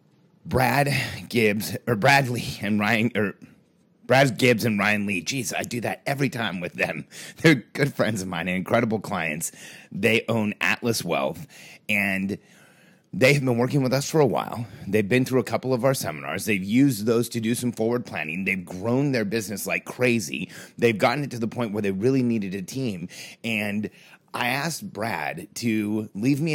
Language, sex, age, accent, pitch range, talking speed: English, male, 30-49, American, 110-140 Hz, 190 wpm